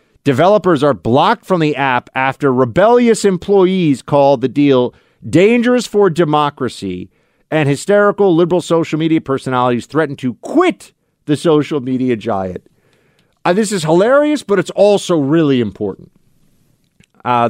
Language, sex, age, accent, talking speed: English, male, 40-59, American, 130 wpm